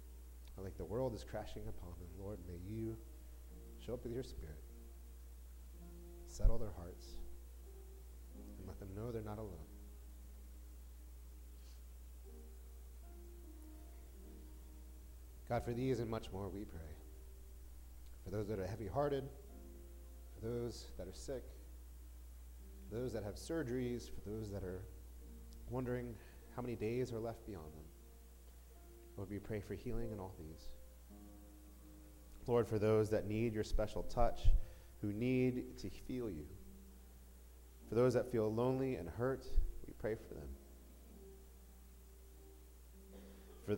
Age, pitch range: 30-49, 65-105 Hz